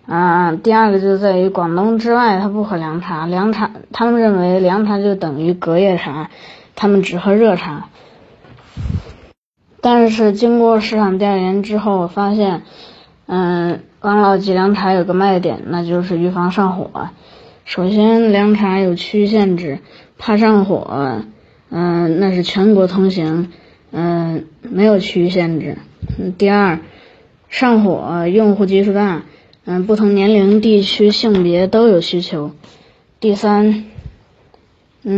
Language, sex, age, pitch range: Chinese, female, 20-39, 175-210 Hz